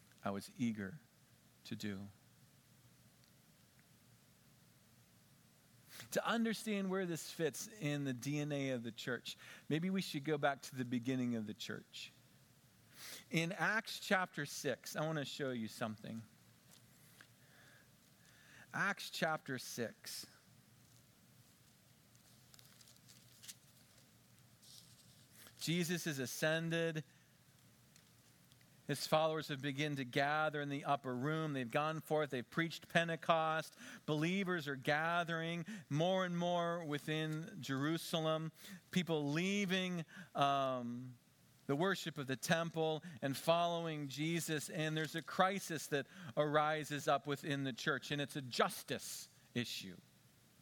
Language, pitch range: English, 135-175 Hz